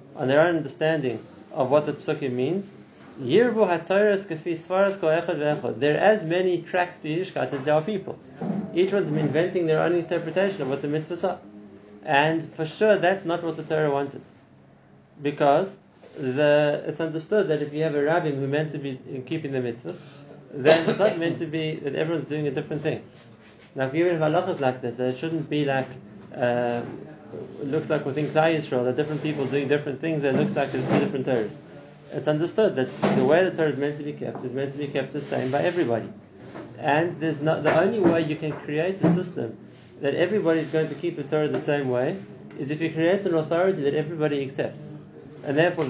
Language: English